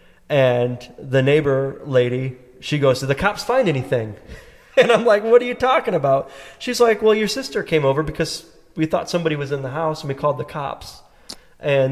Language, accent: English, American